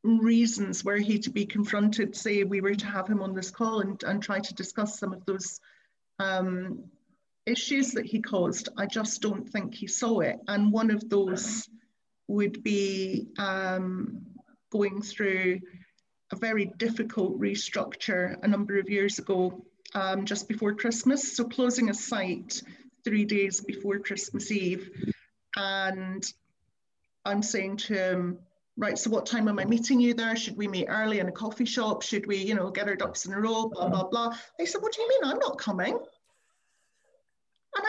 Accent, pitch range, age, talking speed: British, 200-265 Hz, 40-59, 175 wpm